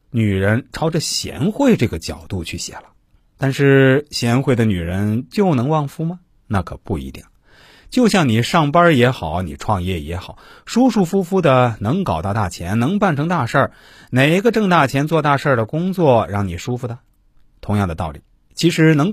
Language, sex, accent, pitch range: Chinese, male, native, 90-145 Hz